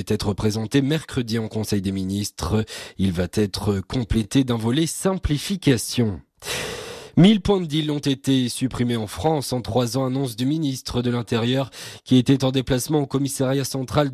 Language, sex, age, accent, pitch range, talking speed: French, male, 30-49, French, 110-155 Hz, 170 wpm